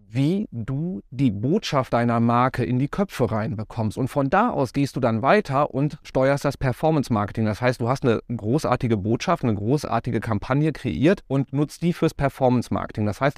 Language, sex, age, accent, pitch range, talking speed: German, male, 30-49, German, 115-145 Hz, 180 wpm